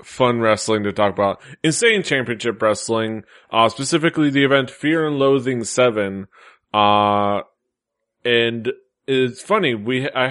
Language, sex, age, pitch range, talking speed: English, male, 20-39, 110-140 Hz, 130 wpm